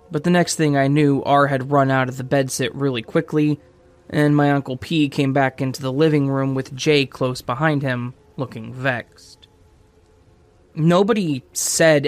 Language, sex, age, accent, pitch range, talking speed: English, male, 20-39, American, 125-150 Hz, 170 wpm